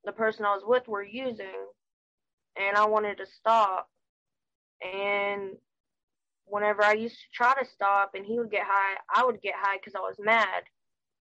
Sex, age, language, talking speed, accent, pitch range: female, 10-29, English, 175 wpm, American, 195-225 Hz